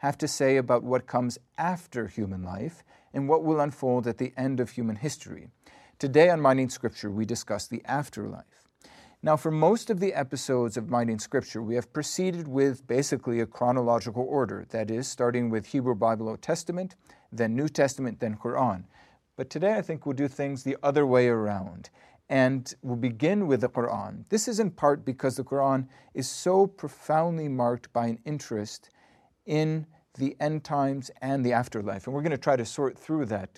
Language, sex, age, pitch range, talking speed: English, male, 40-59, 120-145 Hz, 185 wpm